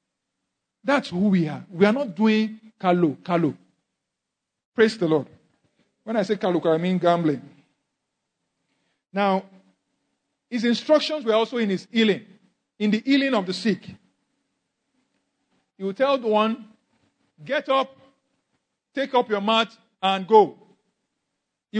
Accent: Nigerian